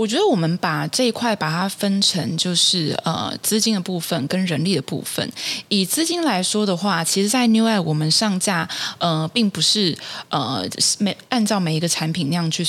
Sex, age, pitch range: female, 20-39, 165-215 Hz